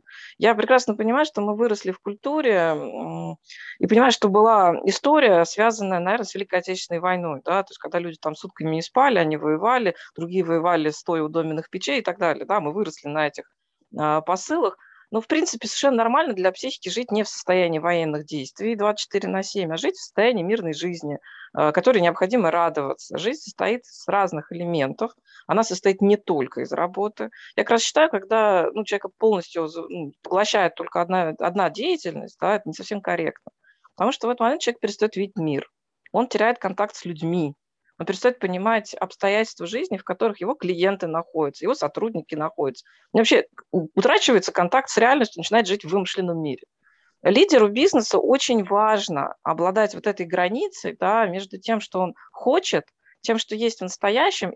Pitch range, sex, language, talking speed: 170-225 Hz, female, Russian, 170 wpm